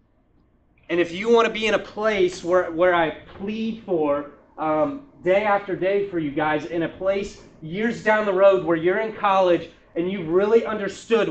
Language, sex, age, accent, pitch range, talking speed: English, male, 30-49, American, 170-210 Hz, 190 wpm